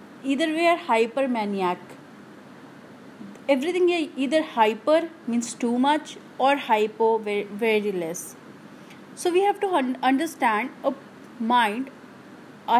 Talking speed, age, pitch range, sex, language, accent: 115 wpm, 30-49, 215-290 Hz, female, Hindi, native